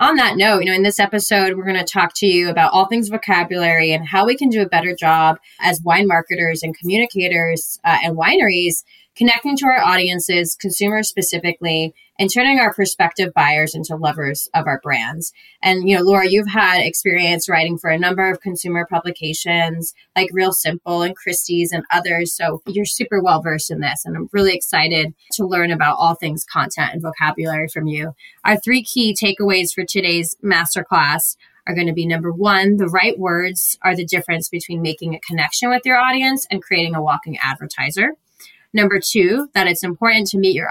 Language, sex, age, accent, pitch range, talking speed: English, female, 20-39, American, 165-200 Hz, 190 wpm